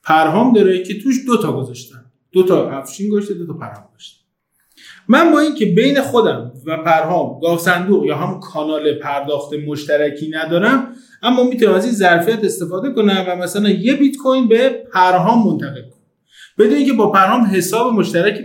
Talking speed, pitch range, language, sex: 170 wpm, 170-240 Hz, Persian, male